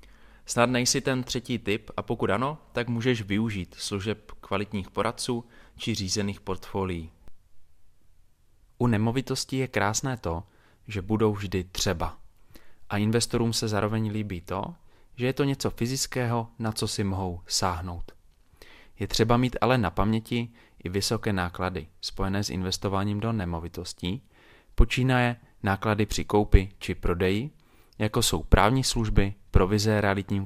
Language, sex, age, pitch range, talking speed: Czech, male, 20-39, 95-115 Hz, 135 wpm